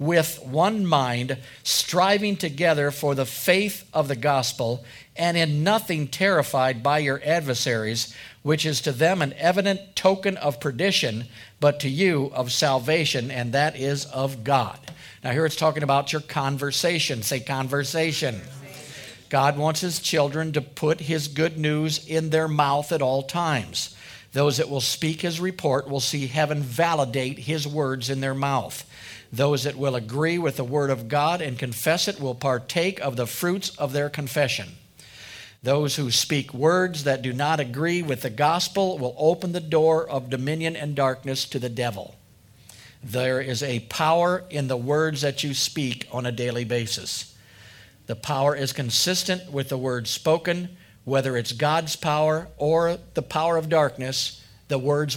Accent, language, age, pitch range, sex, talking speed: American, English, 50-69, 130-160 Hz, male, 165 wpm